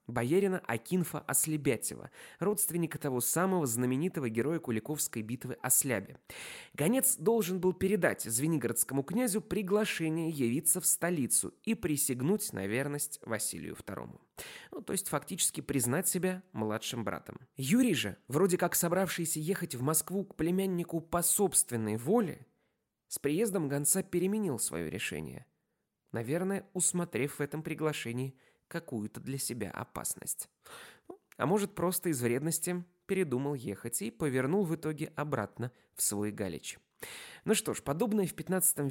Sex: male